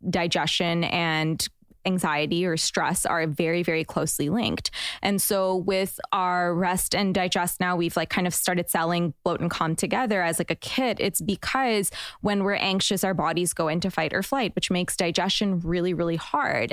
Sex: female